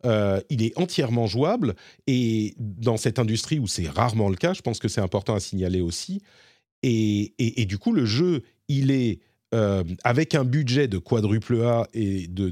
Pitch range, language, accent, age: 100-135 Hz, French, French, 40-59